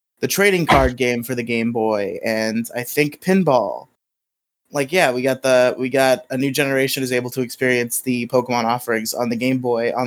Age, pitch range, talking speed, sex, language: 20-39, 120-140 Hz, 205 wpm, male, English